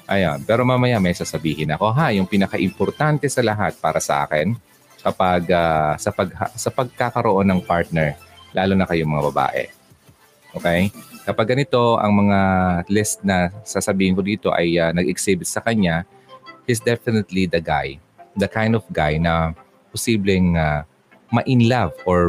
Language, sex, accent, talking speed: Filipino, male, native, 155 wpm